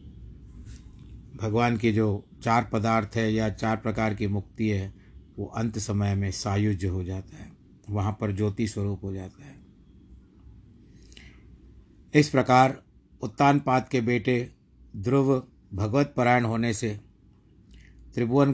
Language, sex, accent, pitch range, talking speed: Hindi, male, native, 105-125 Hz, 120 wpm